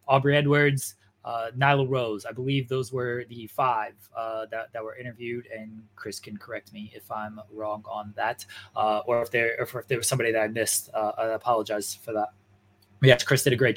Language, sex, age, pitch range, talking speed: English, male, 20-39, 110-140 Hz, 205 wpm